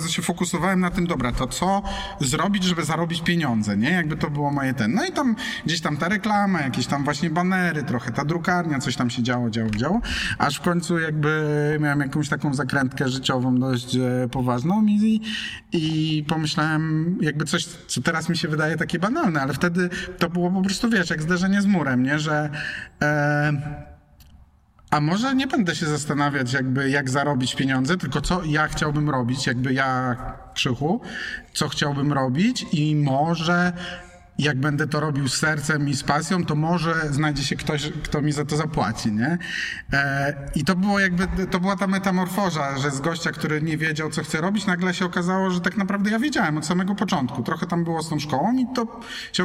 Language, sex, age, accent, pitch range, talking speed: Polish, male, 30-49, native, 140-180 Hz, 190 wpm